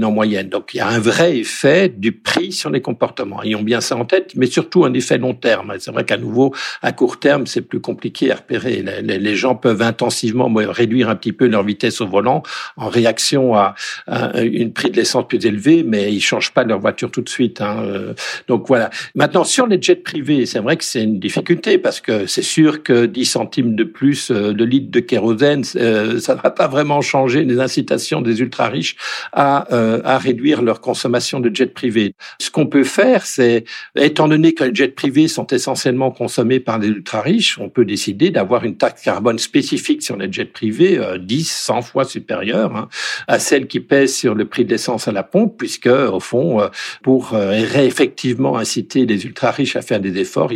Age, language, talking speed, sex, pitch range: 60-79, French, 205 wpm, male, 115-135 Hz